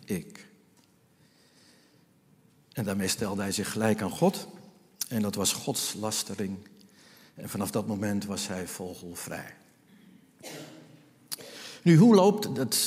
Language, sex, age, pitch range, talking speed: Dutch, male, 60-79, 110-150 Hz, 110 wpm